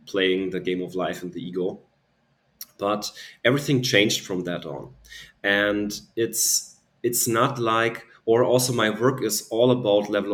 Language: English